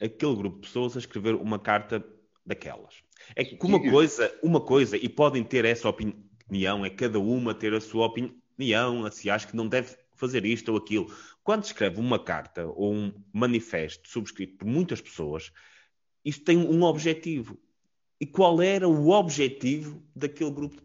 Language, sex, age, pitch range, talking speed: Portuguese, male, 30-49, 125-175 Hz, 175 wpm